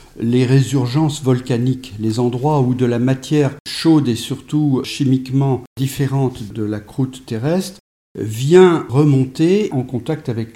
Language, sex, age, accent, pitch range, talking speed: French, male, 50-69, French, 120-155 Hz, 130 wpm